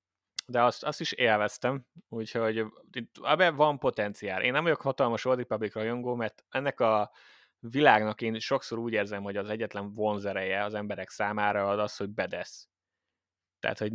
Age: 30-49